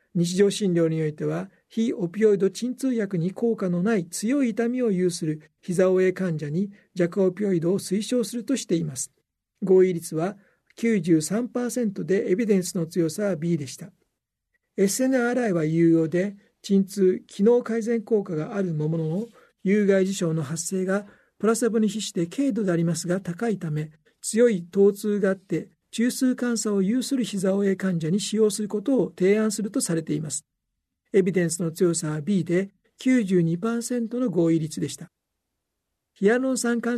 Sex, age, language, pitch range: male, 60-79, Japanese, 170-220 Hz